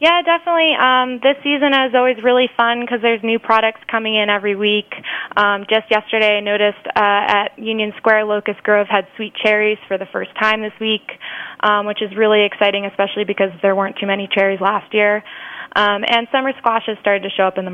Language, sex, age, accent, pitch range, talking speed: English, female, 20-39, American, 195-225 Hz, 205 wpm